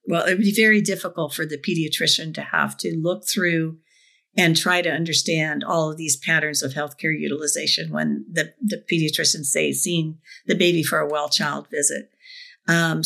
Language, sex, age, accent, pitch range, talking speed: English, female, 50-69, American, 160-200 Hz, 180 wpm